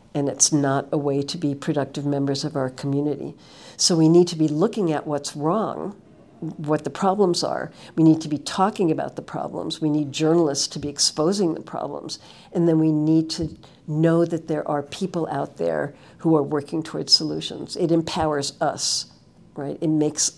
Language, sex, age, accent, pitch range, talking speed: German, female, 60-79, American, 145-165 Hz, 190 wpm